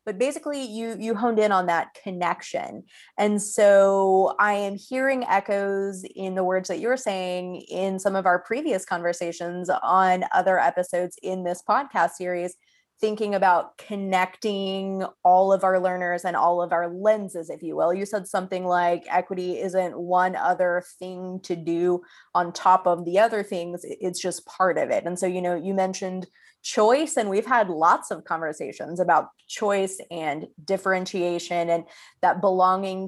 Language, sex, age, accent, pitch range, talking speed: English, female, 20-39, American, 180-200 Hz, 165 wpm